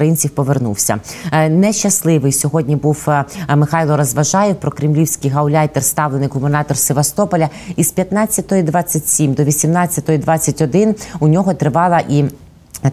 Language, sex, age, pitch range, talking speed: Ukrainian, female, 20-39, 150-180 Hz, 100 wpm